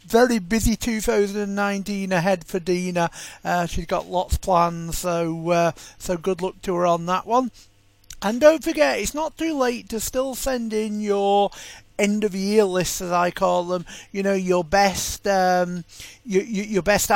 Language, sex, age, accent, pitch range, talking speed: English, male, 40-59, British, 180-230 Hz, 170 wpm